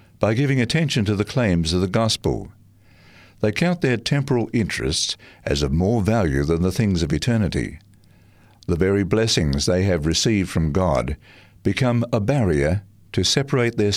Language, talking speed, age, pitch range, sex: English, 160 wpm, 60-79, 90-110 Hz, male